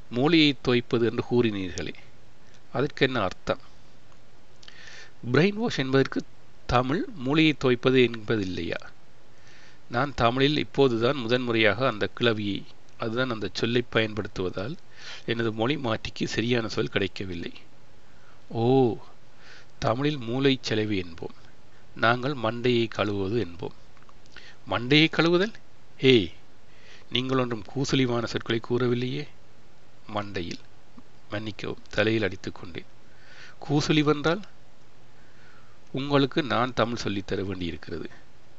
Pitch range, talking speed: 110-135 Hz, 90 wpm